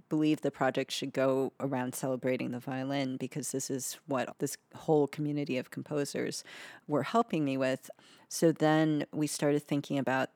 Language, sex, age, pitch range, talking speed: English, female, 30-49, 135-160 Hz, 160 wpm